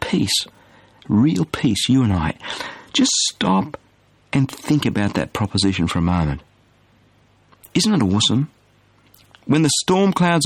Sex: male